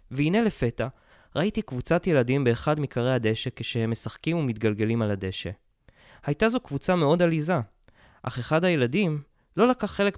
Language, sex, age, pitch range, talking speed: Hebrew, male, 20-39, 115-160 Hz, 140 wpm